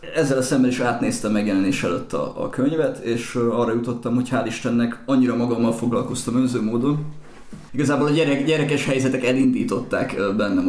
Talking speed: 155 wpm